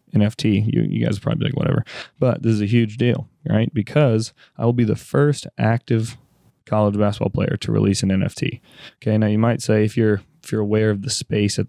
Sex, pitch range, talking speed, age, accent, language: male, 105-125 Hz, 220 wpm, 20-39, American, English